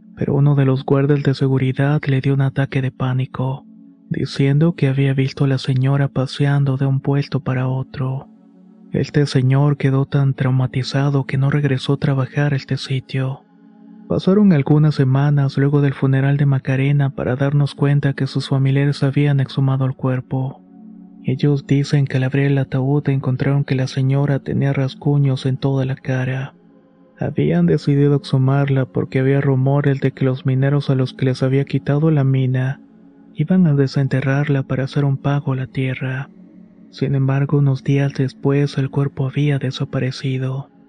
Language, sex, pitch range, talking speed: Spanish, male, 135-145 Hz, 165 wpm